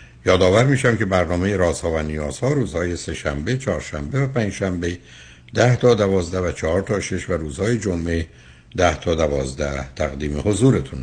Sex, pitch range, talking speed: male, 75-95 Hz, 150 wpm